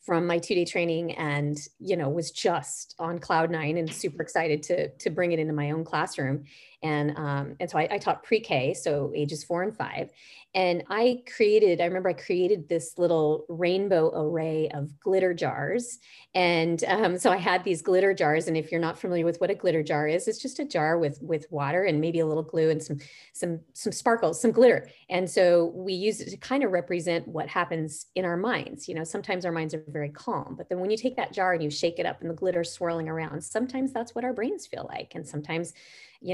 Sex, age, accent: female, 30-49, American